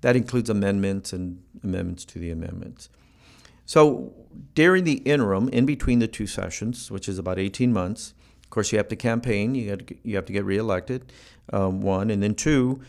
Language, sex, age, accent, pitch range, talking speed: English, male, 50-69, American, 95-120 Hz, 175 wpm